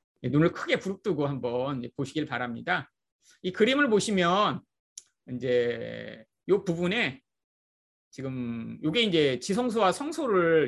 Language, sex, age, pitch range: Korean, male, 30-49, 145-235 Hz